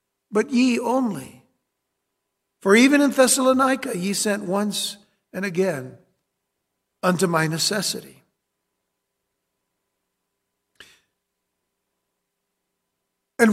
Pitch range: 165-205 Hz